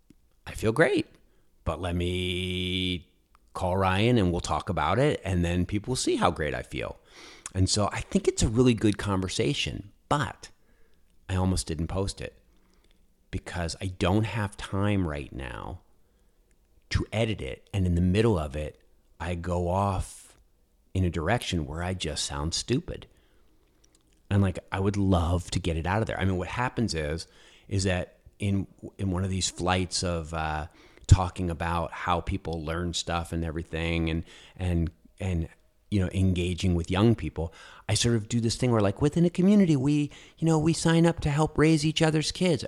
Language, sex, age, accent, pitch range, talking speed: English, male, 40-59, American, 85-110 Hz, 185 wpm